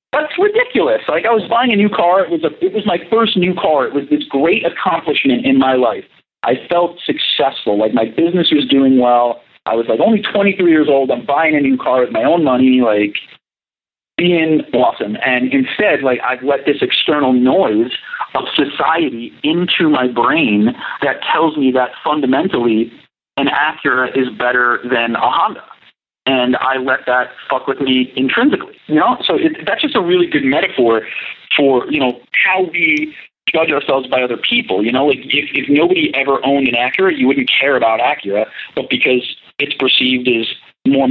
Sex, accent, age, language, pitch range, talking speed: male, American, 40-59, English, 125-180 Hz, 180 wpm